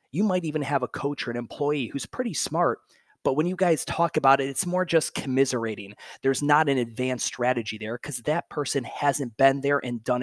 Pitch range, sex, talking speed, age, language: 125-150 Hz, male, 215 wpm, 30-49, English